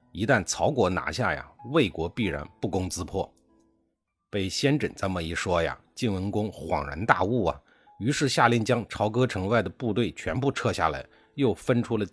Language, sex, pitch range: Chinese, male, 90-130 Hz